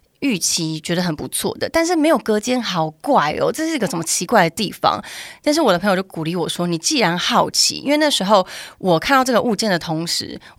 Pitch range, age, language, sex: 170-225 Hz, 30-49, Chinese, female